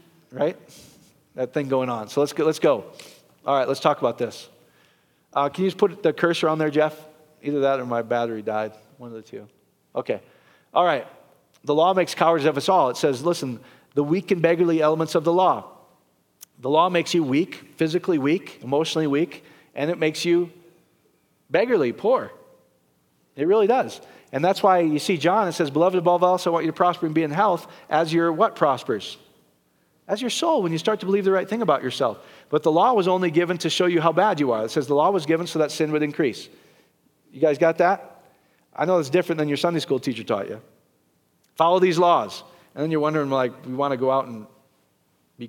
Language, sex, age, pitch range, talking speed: English, male, 40-59, 135-175 Hz, 220 wpm